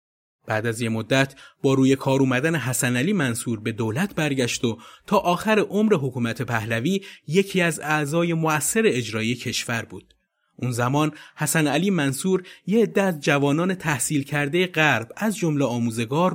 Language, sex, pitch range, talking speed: Persian, male, 120-160 Hz, 150 wpm